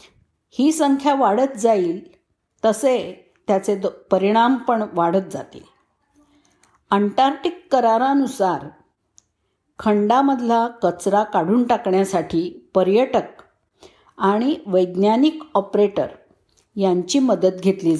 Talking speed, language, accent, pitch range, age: 75 wpm, Marathi, native, 195-270 Hz, 50-69